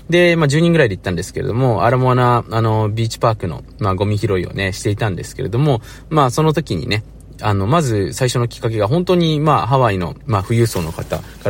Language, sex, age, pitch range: Japanese, male, 20-39, 105-155 Hz